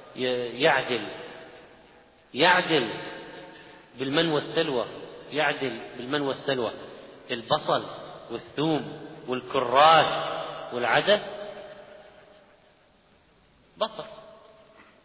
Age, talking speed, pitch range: 40-59, 50 wpm, 135-200 Hz